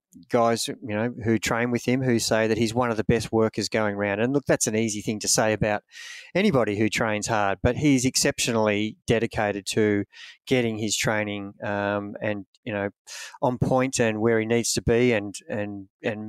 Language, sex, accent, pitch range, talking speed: English, male, Australian, 110-130 Hz, 200 wpm